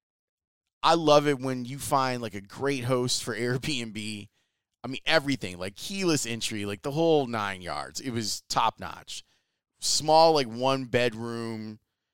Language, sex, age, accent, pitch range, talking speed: English, male, 30-49, American, 105-140 Hz, 145 wpm